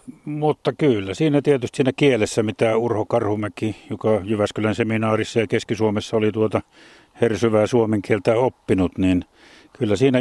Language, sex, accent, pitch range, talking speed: Finnish, male, native, 100-120 Hz, 135 wpm